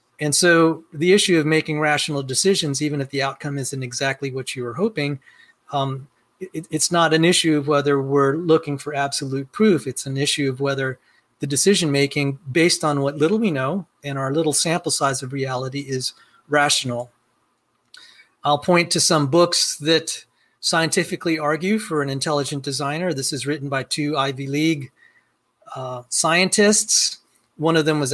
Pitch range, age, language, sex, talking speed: 135-160 Hz, 40-59, English, male, 165 wpm